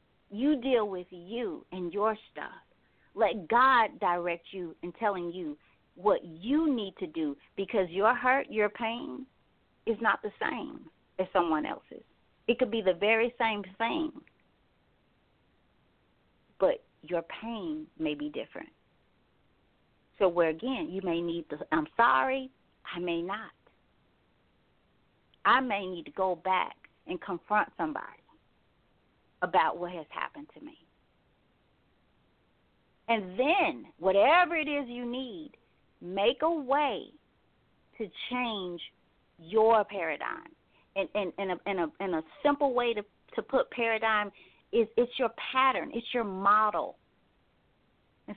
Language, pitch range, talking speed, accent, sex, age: English, 180-250 Hz, 130 wpm, American, female, 40-59